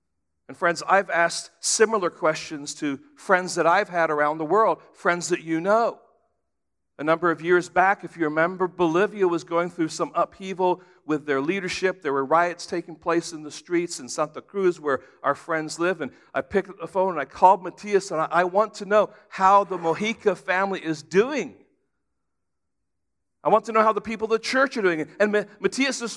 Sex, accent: male, American